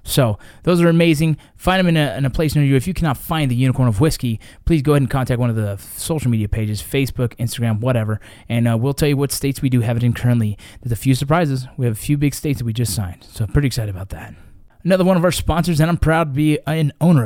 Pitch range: 115-145 Hz